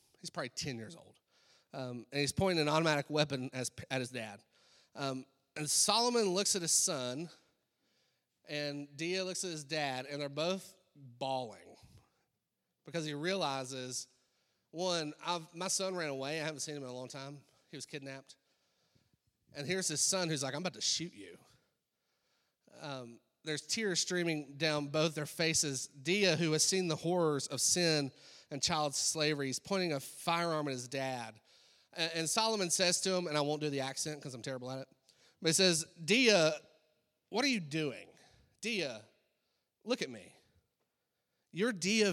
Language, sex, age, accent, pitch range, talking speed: English, male, 30-49, American, 140-180 Hz, 170 wpm